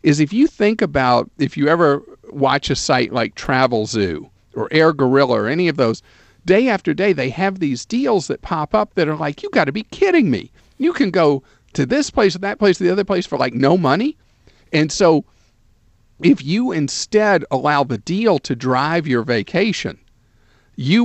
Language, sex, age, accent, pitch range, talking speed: English, male, 50-69, American, 120-180 Hz, 200 wpm